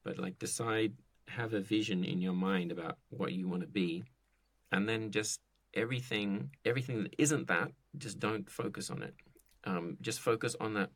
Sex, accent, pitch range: male, Australian, 95-115 Hz